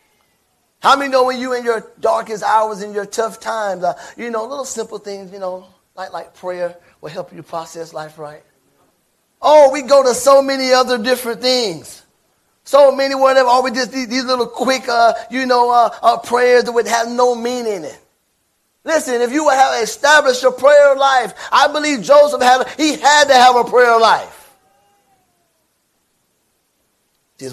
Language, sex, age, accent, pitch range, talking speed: English, male, 30-49, American, 180-255 Hz, 185 wpm